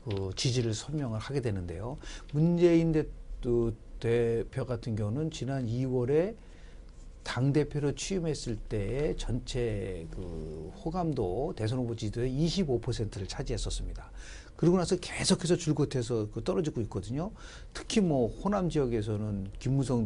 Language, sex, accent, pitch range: Korean, male, native, 110-155 Hz